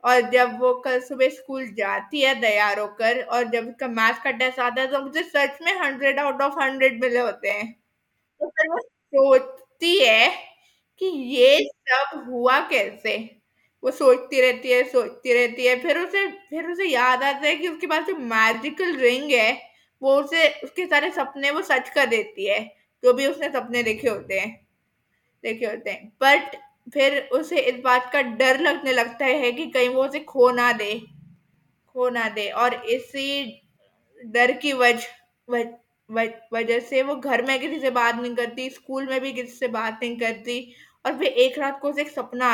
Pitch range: 240-280 Hz